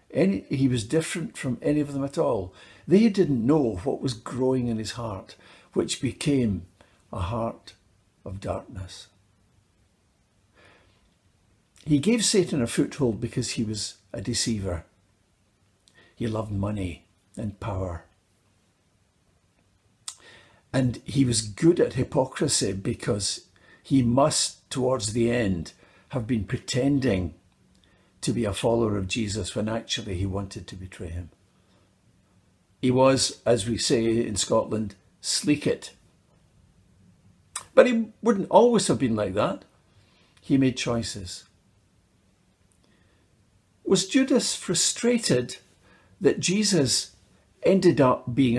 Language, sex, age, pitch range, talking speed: English, male, 60-79, 95-130 Hz, 115 wpm